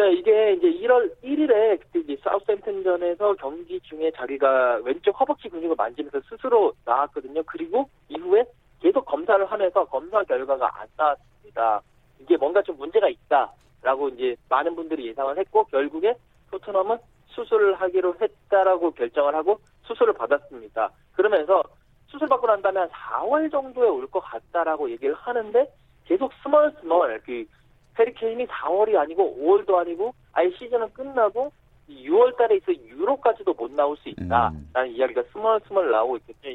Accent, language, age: native, Korean, 40-59